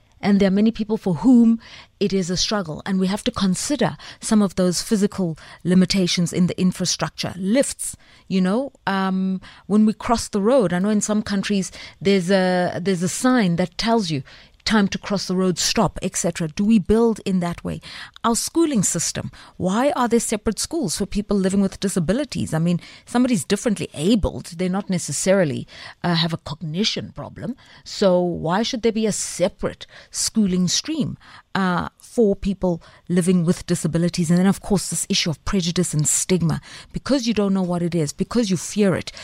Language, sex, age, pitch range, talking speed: English, female, 30-49, 170-205 Hz, 185 wpm